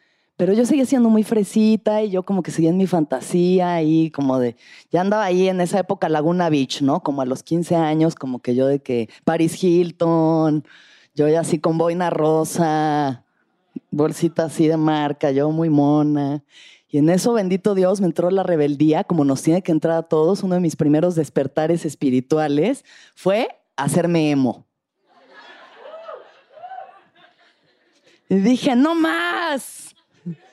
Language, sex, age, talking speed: Spanish, female, 30-49, 155 wpm